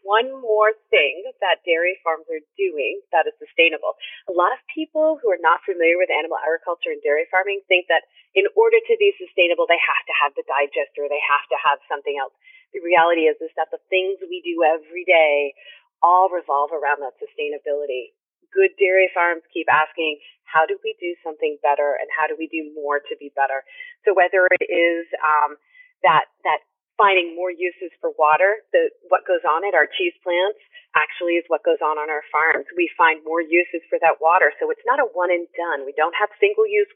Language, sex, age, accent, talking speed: English, female, 30-49, American, 205 wpm